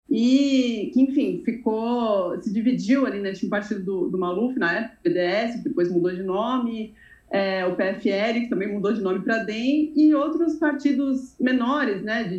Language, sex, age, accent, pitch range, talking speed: Portuguese, female, 30-49, Brazilian, 205-270 Hz, 175 wpm